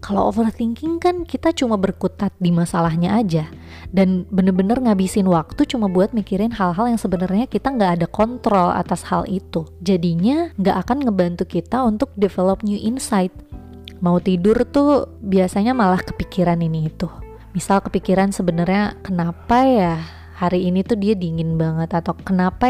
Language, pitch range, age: Indonesian, 175-220 Hz, 20-39